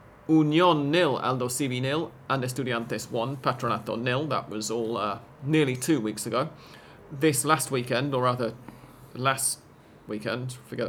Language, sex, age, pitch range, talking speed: English, male, 40-59, 120-150 Hz, 145 wpm